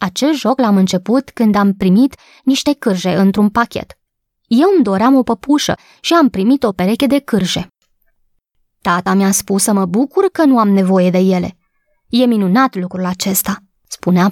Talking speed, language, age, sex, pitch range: 170 wpm, Romanian, 20-39, female, 195-260 Hz